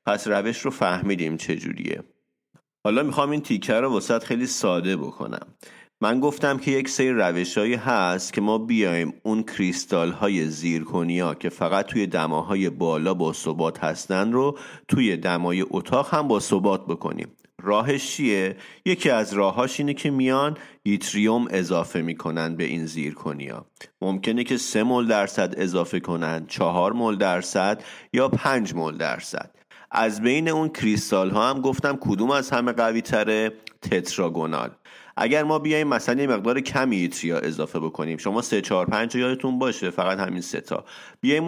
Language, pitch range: Persian, 90-130 Hz